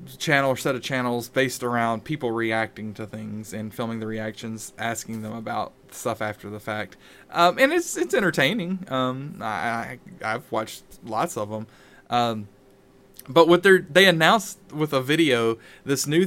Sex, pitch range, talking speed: male, 115-140 Hz, 170 wpm